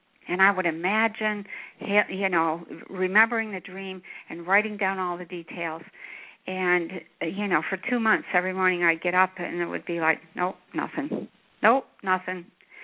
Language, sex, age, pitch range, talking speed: English, female, 60-79, 180-215 Hz, 165 wpm